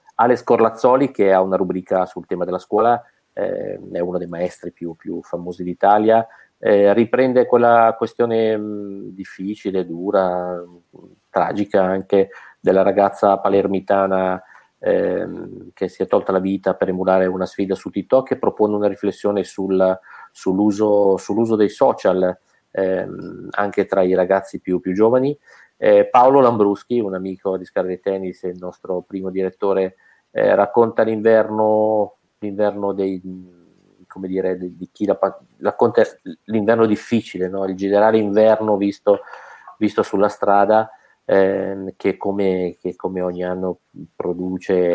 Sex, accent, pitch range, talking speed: male, native, 95-105 Hz, 120 wpm